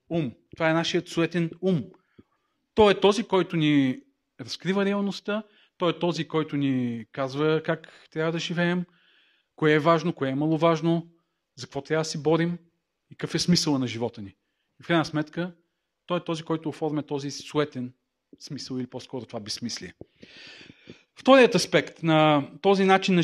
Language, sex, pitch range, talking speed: Bulgarian, male, 145-185 Hz, 165 wpm